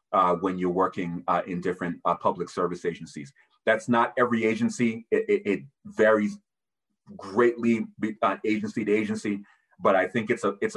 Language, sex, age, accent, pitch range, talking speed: English, male, 30-49, American, 90-105 Hz, 175 wpm